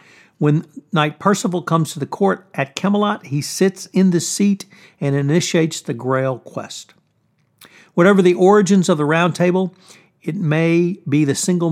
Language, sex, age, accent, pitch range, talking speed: English, male, 60-79, American, 140-180 Hz, 160 wpm